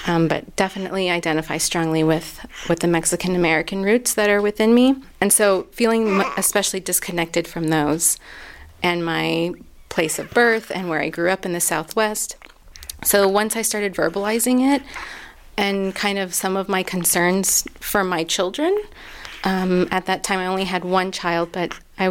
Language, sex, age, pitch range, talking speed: English, female, 30-49, 170-195 Hz, 165 wpm